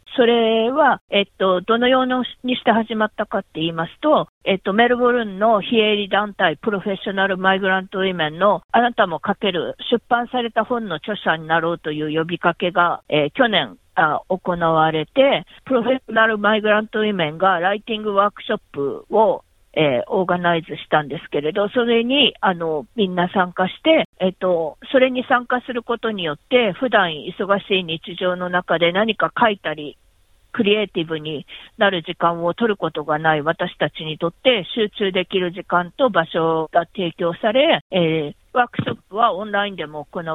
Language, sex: Japanese, female